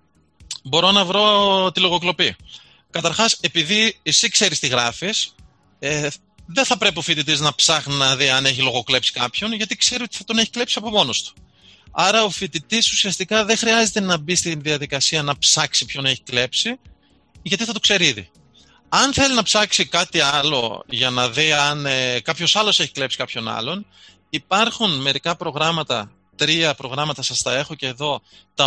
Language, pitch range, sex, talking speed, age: Greek, 130-180 Hz, male, 175 wpm, 30-49